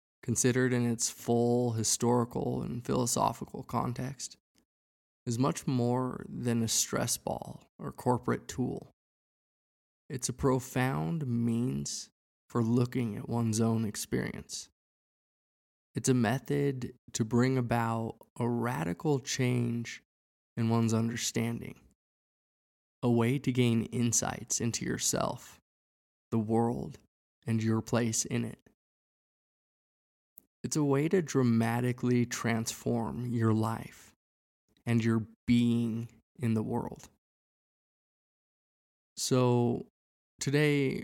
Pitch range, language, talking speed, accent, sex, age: 115-125 Hz, English, 100 wpm, American, male, 20-39